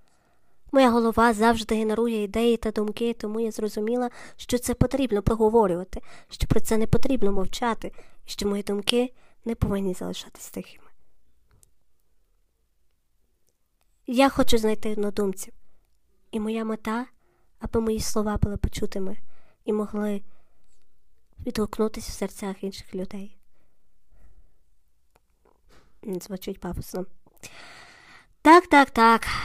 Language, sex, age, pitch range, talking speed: Ukrainian, male, 20-39, 190-230 Hz, 105 wpm